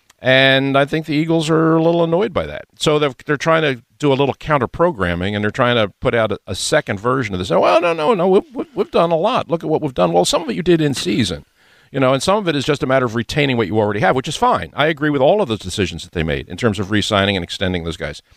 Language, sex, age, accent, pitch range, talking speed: English, male, 50-69, American, 105-145 Hz, 305 wpm